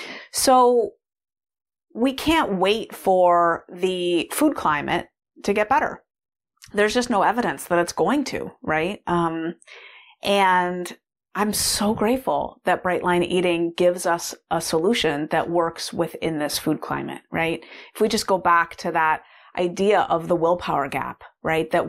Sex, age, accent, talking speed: female, 30-49, American, 150 wpm